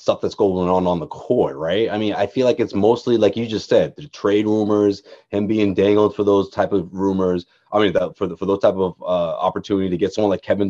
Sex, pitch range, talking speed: male, 100-140 Hz, 260 wpm